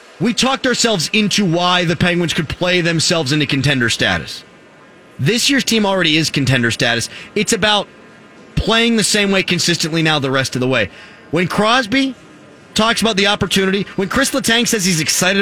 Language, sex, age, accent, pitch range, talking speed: English, male, 30-49, American, 165-220 Hz, 175 wpm